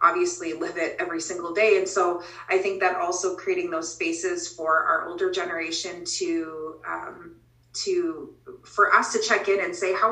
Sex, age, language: female, 30-49, English